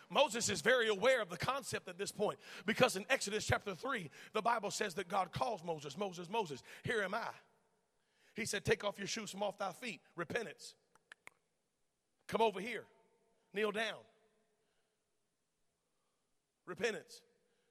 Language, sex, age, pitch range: English, male, 40-59, 210-245 Hz